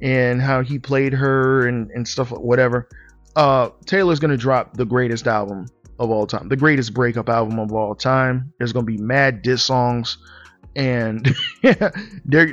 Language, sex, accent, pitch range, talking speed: English, male, American, 120-155 Hz, 165 wpm